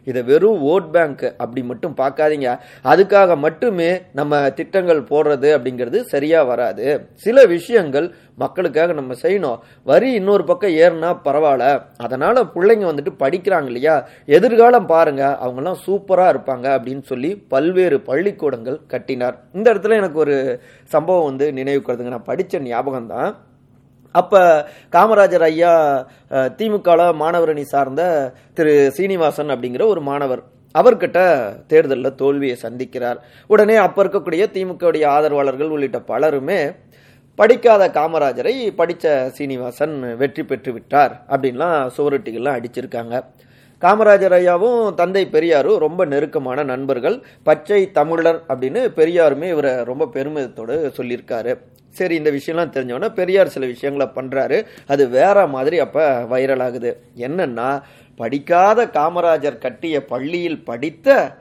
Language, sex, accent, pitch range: Tamil, male, native, 130-175 Hz